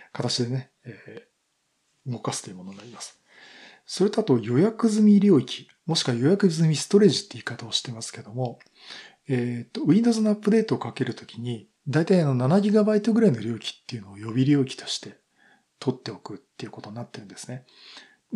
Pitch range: 120-180 Hz